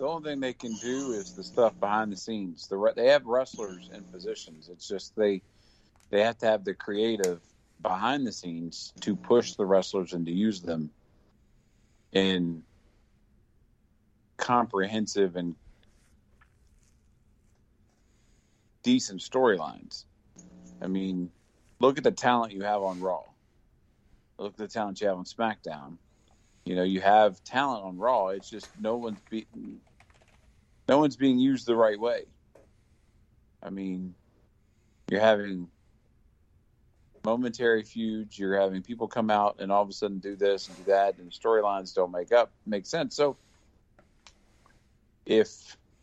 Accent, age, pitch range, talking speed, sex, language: American, 40-59, 90-110 Hz, 140 wpm, male, English